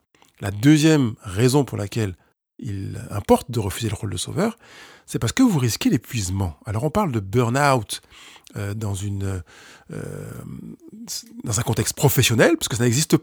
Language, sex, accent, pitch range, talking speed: French, male, French, 110-170 Hz, 155 wpm